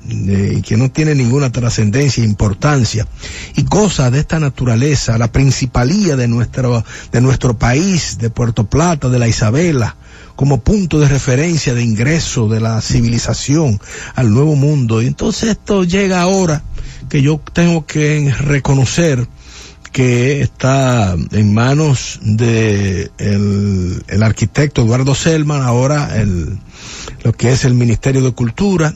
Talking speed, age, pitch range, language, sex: 135 wpm, 50-69, 115-150 Hz, English, male